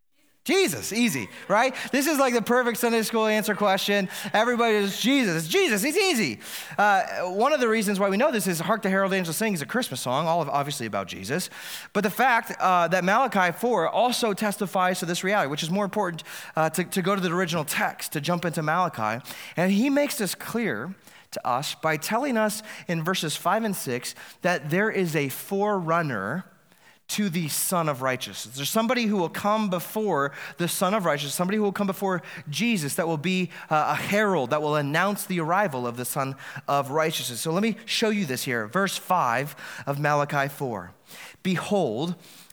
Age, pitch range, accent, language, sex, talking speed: 30-49, 145-205 Hz, American, English, male, 195 wpm